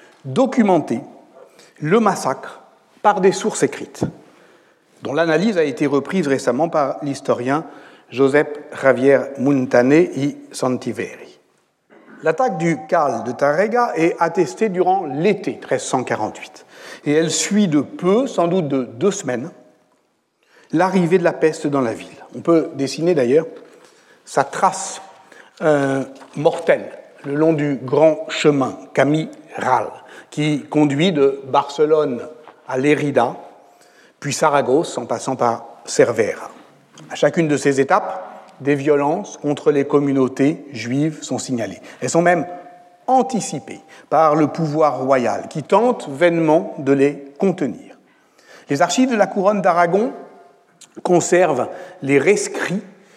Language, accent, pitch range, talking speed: French, French, 140-180 Hz, 125 wpm